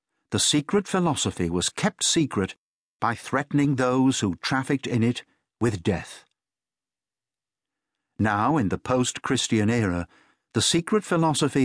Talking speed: 120 wpm